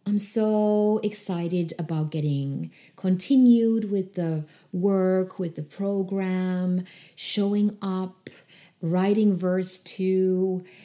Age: 30-49